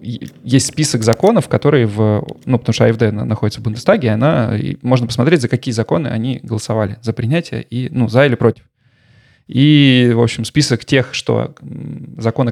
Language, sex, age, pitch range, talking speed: Russian, male, 20-39, 110-130 Hz, 175 wpm